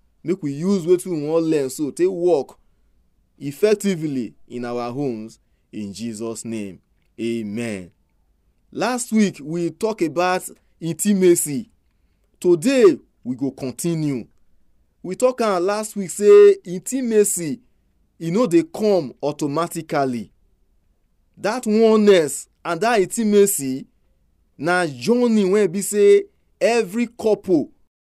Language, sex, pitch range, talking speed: English, male, 130-205 Hz, 110 wpm